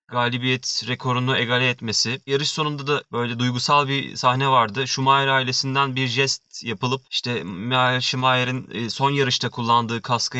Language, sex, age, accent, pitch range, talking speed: Turkish, male, 30-49, native, 120-150 Hz, 140 wpm